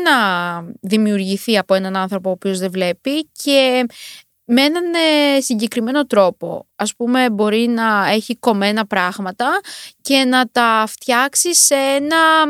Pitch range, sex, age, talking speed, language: 205-275 Hz, female, 20-39, 130 wpm, Greek